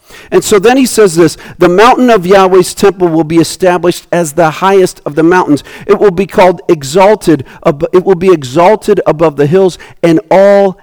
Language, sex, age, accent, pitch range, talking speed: English, male, 50-69, American, 150-195 Hz, 190 wpm